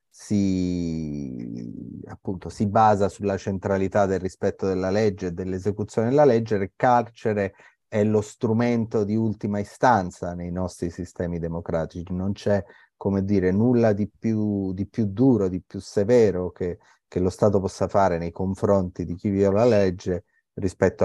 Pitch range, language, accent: 90-110 Hz, Italian, native